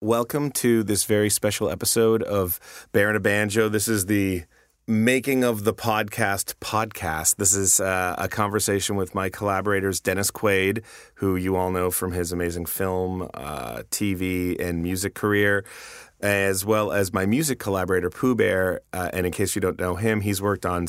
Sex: male